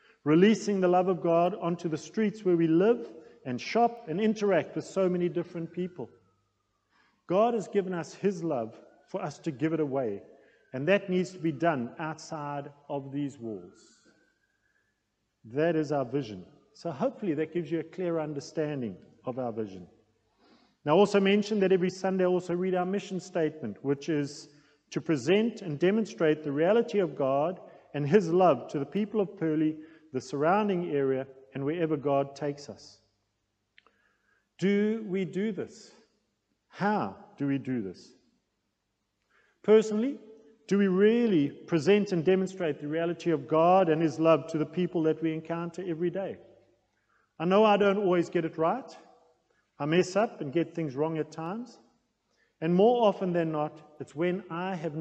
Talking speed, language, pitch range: 165 wpm, English, 150-190 Hz